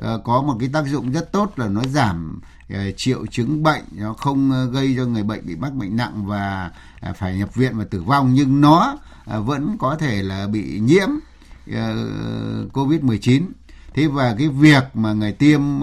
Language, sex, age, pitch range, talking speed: Vietnamese, male, 60-79, 105-140 Hz, 195 wpm